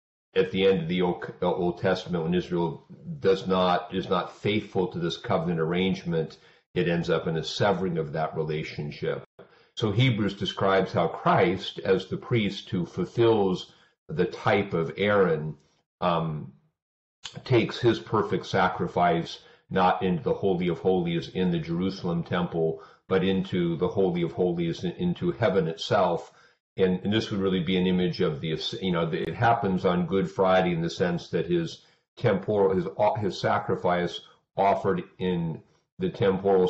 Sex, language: male, English